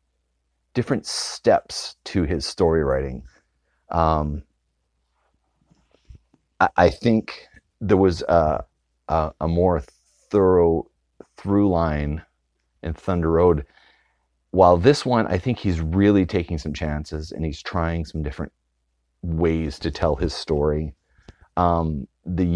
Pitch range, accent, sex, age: 75-90 Hz, American, male, 30-49